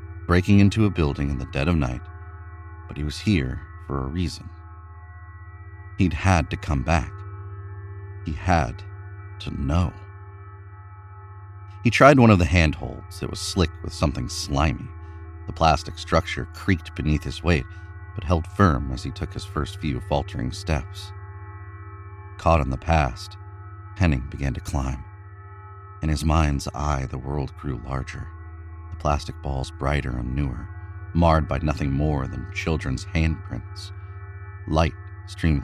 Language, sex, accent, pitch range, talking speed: English, male, American, 80-100 Hz, 145 wpm